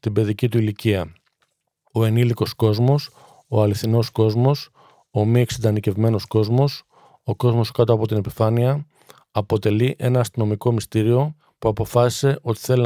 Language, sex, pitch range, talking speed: Greek, male, 110-125 Hz, 130 wpm